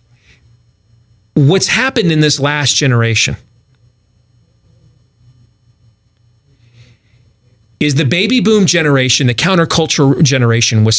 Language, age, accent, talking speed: English, 40-59, American, 80 wpm